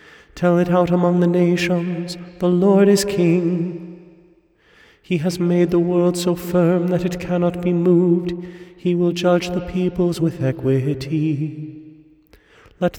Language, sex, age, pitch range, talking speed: English, male, 30-49, 170-180 Hz, 140 wpm